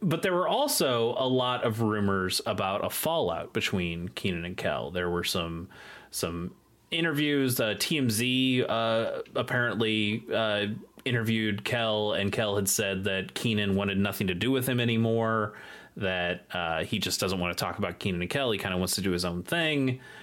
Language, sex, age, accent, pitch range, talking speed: English, male, 30-49, American, 95-120 Hz, 180 wpm